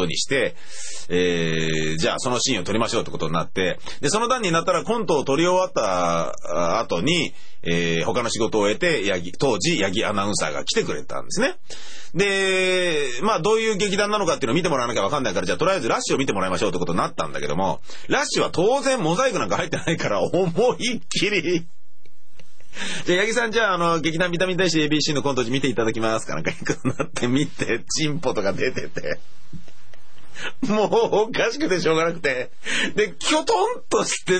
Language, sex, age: Japanese, male, 30-49